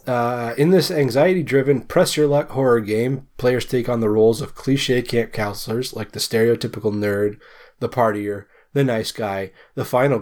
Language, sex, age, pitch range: English, male, 20-39, 115-135 Hz